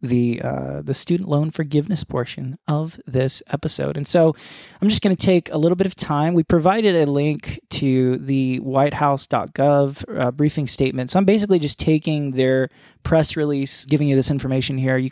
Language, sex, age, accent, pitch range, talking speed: English, male, 20-39, American, 130-155 Hz, 185 wpm